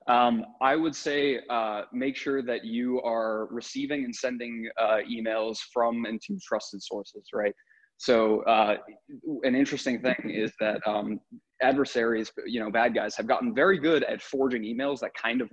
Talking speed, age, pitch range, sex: 170 wpm, 20-39, 115-155 Hz, male